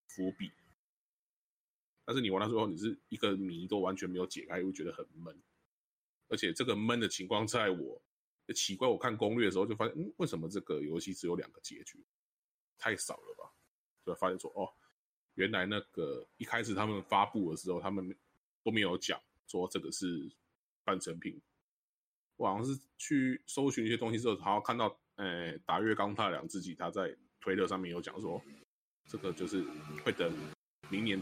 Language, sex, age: Chinese, male, 20-39